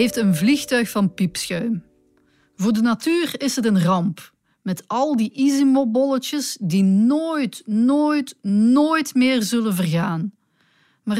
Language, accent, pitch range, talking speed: Dutch, Dutch, 185-265 Hz, 130 wpm